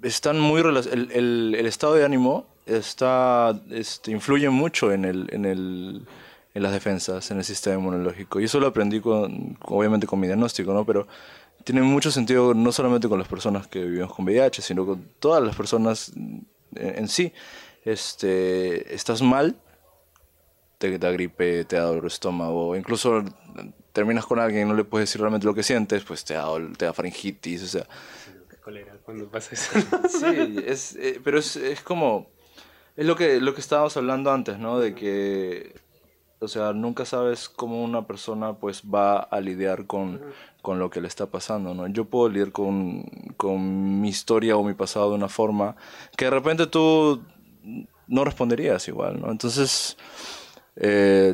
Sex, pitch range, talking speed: male, 95-125 Hz, 175 wpm